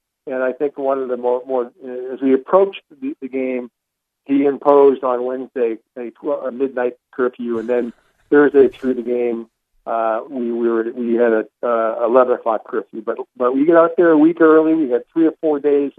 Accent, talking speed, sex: American, 210 wpm, male